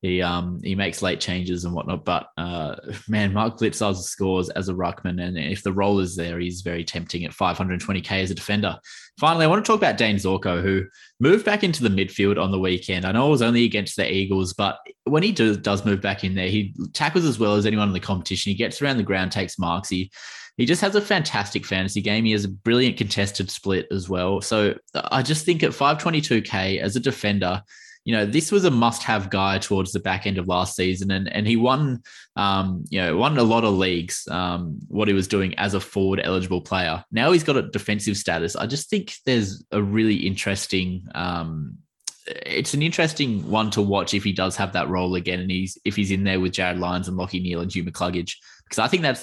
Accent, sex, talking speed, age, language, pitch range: Australian, male, 230 wpm, 20-39, English, 90-110 Hz